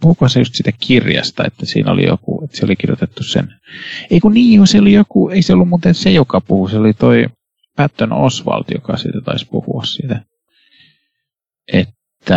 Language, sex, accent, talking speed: Finnish, male, native, 185 wpm